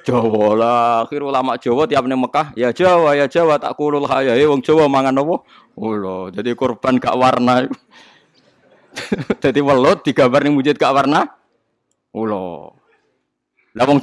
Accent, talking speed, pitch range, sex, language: native, 135 wpm, 110-150 Hz, male, Indonesian